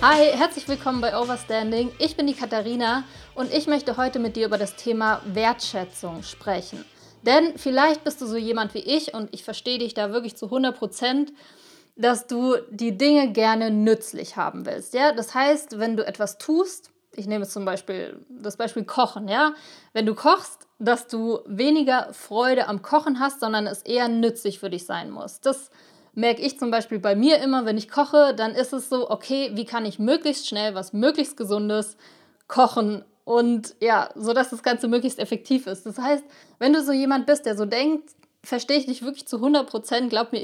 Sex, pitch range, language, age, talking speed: female, 220-280 Hz, German, 20-39, 190 wpm